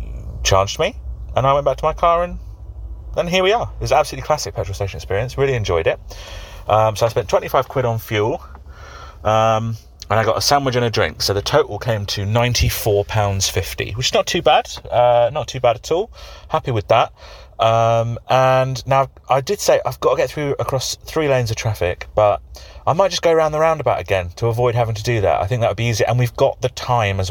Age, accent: 30-49, British